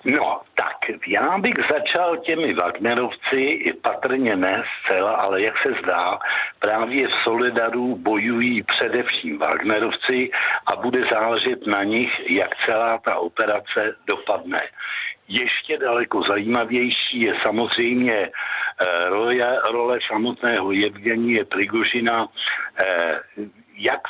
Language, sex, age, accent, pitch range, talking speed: Czech, male, 60-79, native, 110-125 Hz, 105 wpm